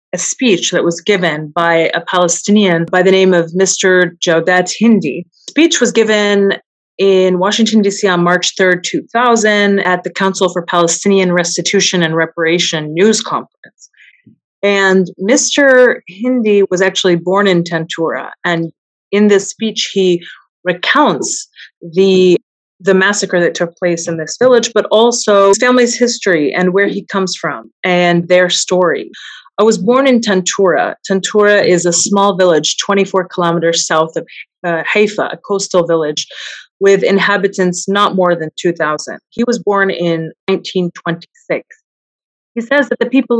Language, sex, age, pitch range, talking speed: English, female, 30-49, 175-205 Hz, 150 wpm